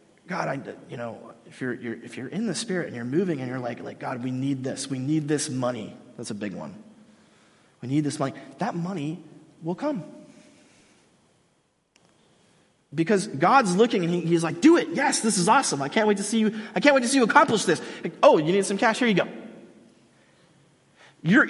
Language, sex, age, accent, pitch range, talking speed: English, male, 30-49, American, 165-235 Hz, 210 wpm